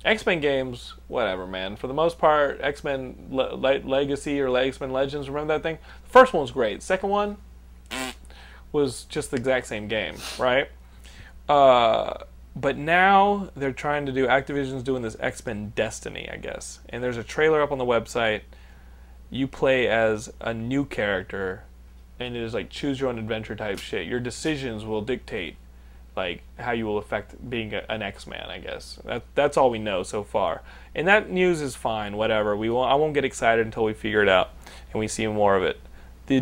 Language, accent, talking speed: English, American, 190 wpm